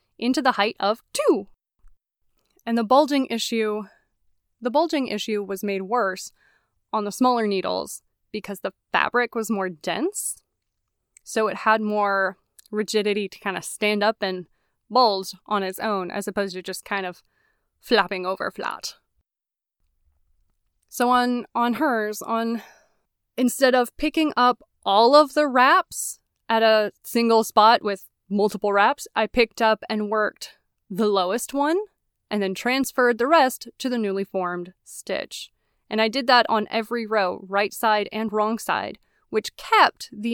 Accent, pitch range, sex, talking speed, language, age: American, 200-245 Hz, female, 150 wpm, English, 20-39